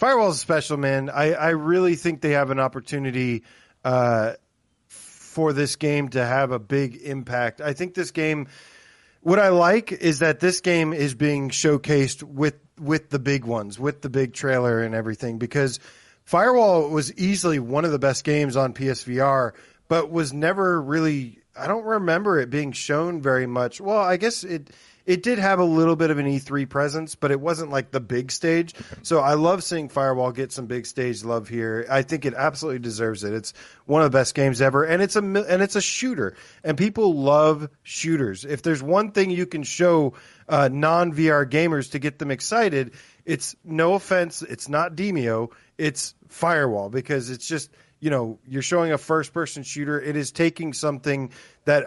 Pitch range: 135-165 Hz